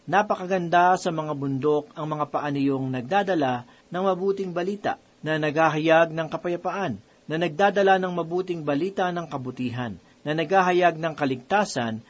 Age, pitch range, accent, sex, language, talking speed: 40-59, 140-185 Hz, native, male, Filipino, 135 wpm